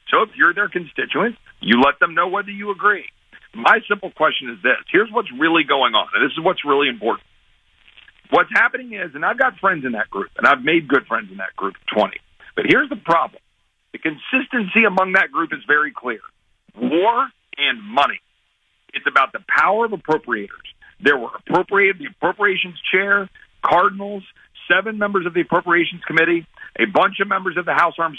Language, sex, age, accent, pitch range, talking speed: English, male, 50-69, American, 150-210 Hz, 190 wpm